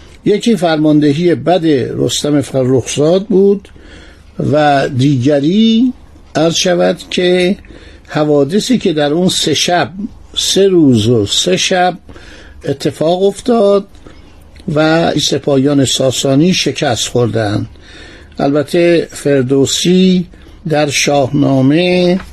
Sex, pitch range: male, 130-180 Hz